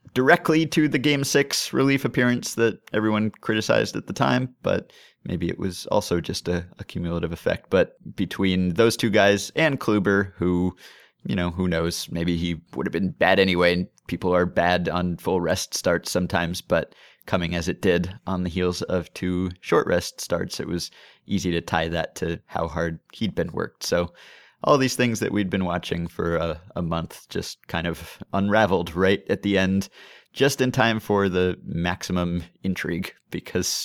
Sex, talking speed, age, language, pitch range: male, 185 wpm, 30-49, English, 90-110 Hz